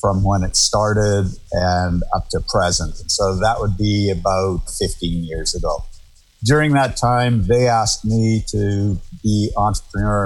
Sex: male